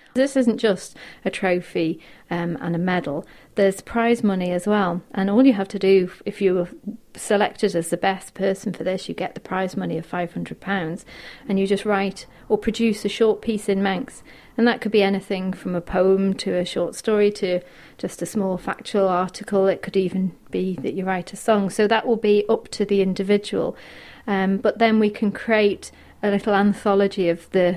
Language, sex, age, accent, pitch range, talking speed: English, female, 40-59, British, 185-210 Hz, 200 wpm